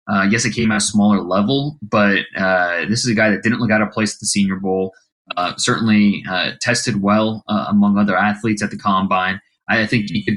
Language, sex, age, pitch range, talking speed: English, male, 20-39, 100-115 Hz, 230 wpm